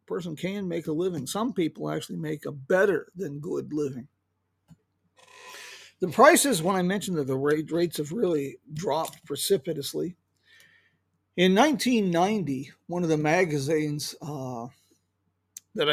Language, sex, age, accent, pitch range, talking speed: English, male, 50-69, American, 145-195 Hz, 130 wpm